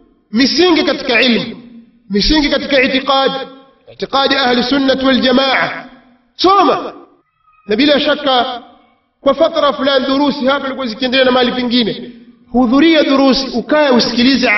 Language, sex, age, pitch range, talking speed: Swahili, male, 40-59, 230-290 Hz, 115 wpm